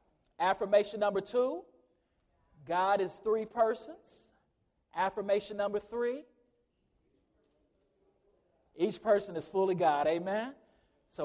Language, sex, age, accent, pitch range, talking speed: English, male, 40-59, American, 145-200 Hz, 90 wpm